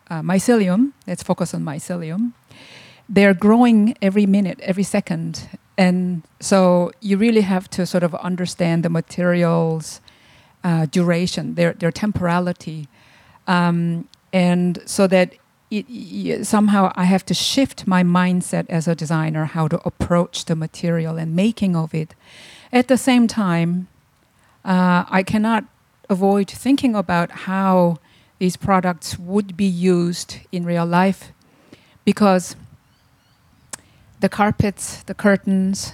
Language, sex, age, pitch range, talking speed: English, female, 50-69, 170-200 Hz, 130 wpm